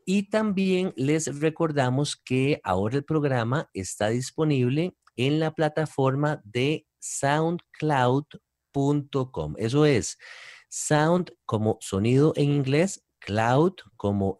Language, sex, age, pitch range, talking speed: English, male, 40-59, 115-155 Hz, 100 wpm